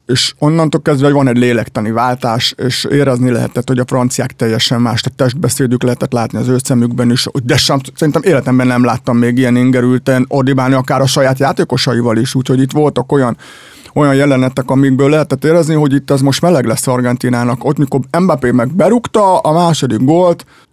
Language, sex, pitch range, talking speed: English, male, 125-150 Hz, 180 wpm